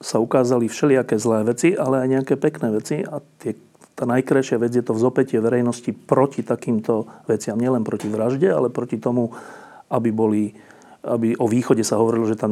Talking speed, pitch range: 175 wpm, 115-130 Hz